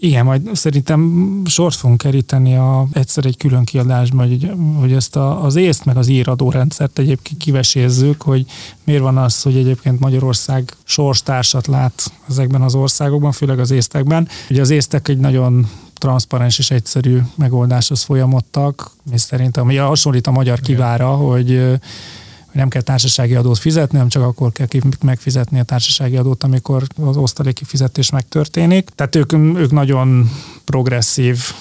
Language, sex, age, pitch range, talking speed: Hungarian, male, 30-49, 125-140 Hz, 145 wpm